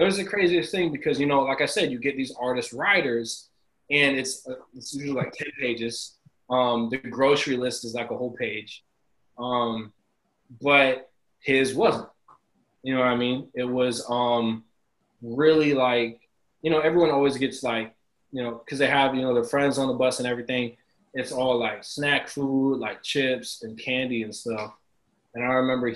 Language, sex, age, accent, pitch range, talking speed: English, male, 20-39, American, 120-155 Hz, 185 wpm